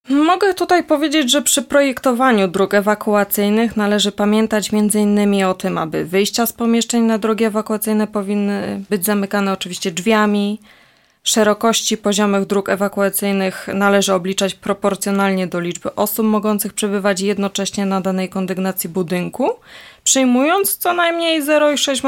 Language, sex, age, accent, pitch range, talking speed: Polish, female, 20-39, native, 195-250 Hz, 125 wpm